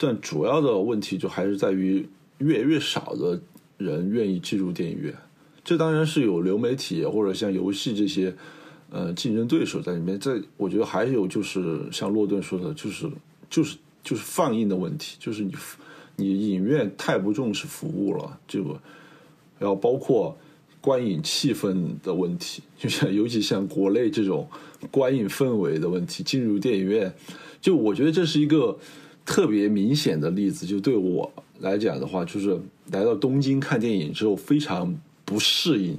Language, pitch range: Chinese, 100-150 Hz